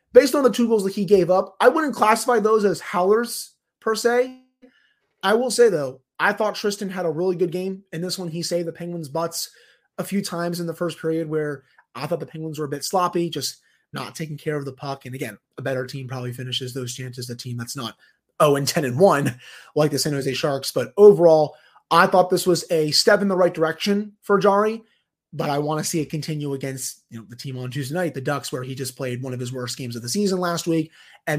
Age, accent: 30-49, American